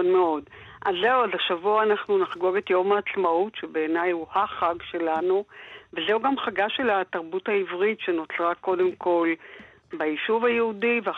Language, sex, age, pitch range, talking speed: Hebrew, female, 50-69, 170-205 Hz, 140 wpm